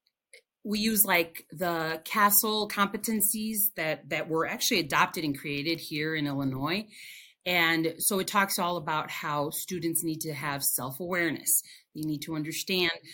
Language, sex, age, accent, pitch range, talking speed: English, female, 30-49, American, 155-200 Hz, 145 wpm